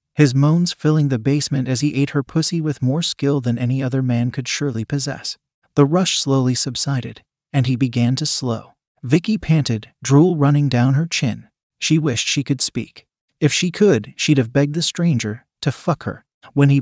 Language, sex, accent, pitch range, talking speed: English, male, American, 125-155 Hz, 195 wpm